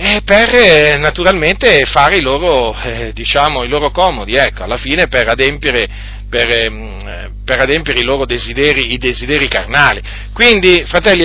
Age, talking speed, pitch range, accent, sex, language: 40-59, 150 wpm, 110-160 Hz, native, male, Italian